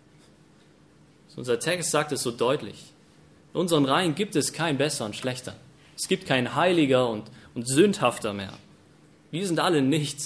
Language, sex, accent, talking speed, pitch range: German, male, German, 160 wpm, 125-155 Hz